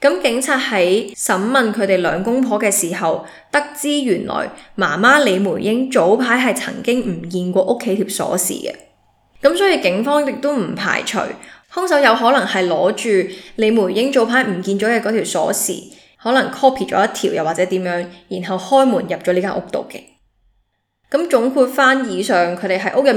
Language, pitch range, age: Chinese, 185-255 Hz, 10-29